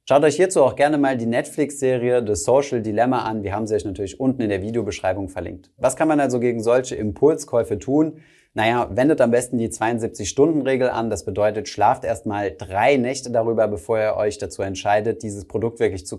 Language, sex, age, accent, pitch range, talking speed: German, male, 30-49, German, 105-130 Hz, 200 wpm